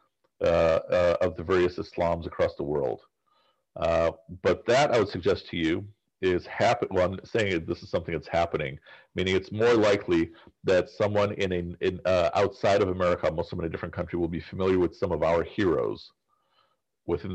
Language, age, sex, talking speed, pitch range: English, 40-59, male, 195 wpm, 85-115 Hz